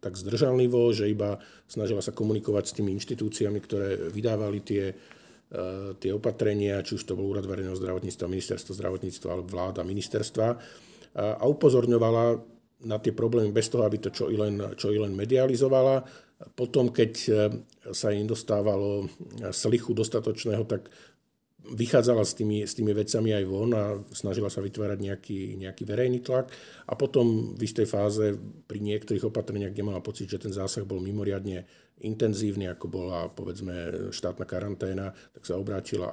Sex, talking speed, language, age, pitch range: male, 155 wpm, Slovak, 50-69, 90-110 Hz